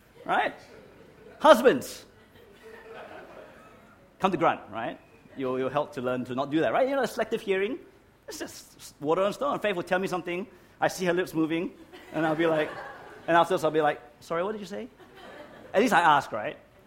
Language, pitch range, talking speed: English, 115-170 Hz, 200 wpm